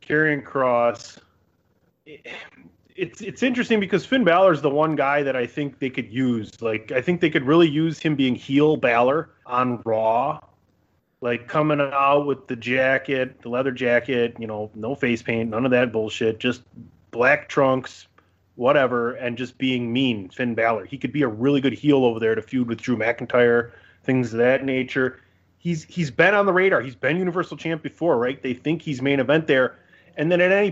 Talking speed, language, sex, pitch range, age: 195 wpm, English, male, 120-155 Hz, 30-49